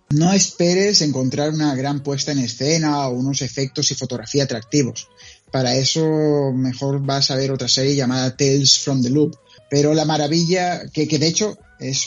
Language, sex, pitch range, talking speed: Spanish, male, 130-165 Hz, 175 wpm